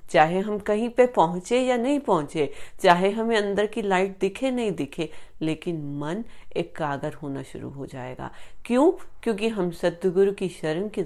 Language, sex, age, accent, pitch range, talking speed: Hindi, female, 30-49, native, 155-205 Hz, 170 wpm